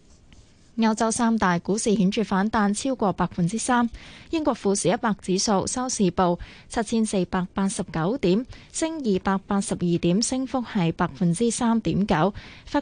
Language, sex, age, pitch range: Chinese, female, 20-39, 180-235 Hz